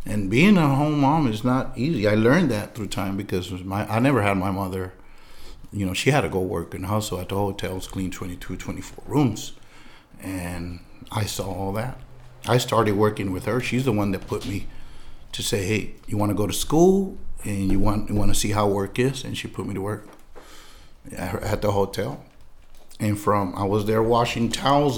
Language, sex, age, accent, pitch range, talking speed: English, male, 50-69, American, 95-120 Hz, 205 wpm